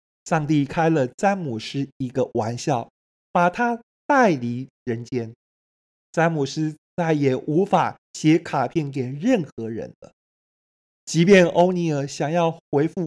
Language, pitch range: Chinese, 125-170 Hz